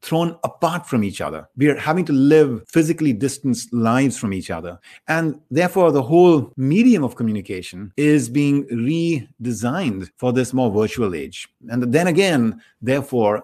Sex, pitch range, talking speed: male, 120-155 Hz, 155 wpm